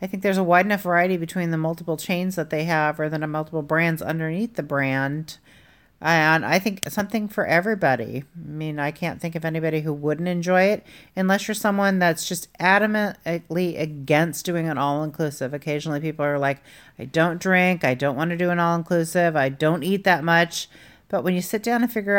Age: 40-59